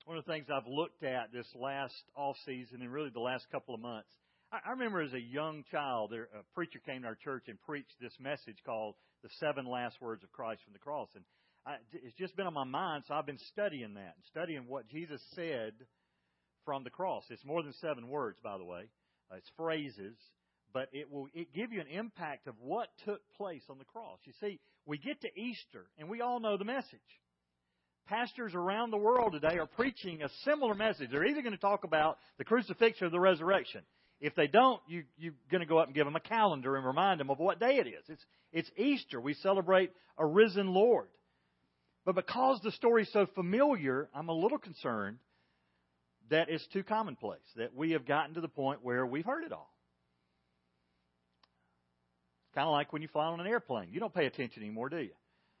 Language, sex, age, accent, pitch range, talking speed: English, male, 50-69, American, 115-190 Hz, 210 wpm